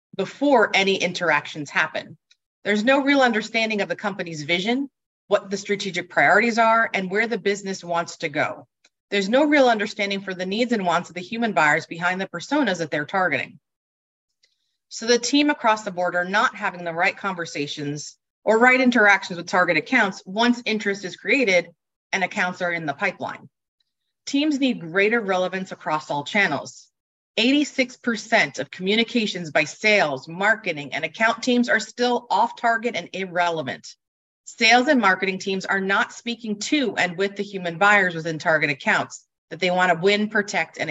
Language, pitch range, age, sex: English, 180-230 Hz, 30-49, female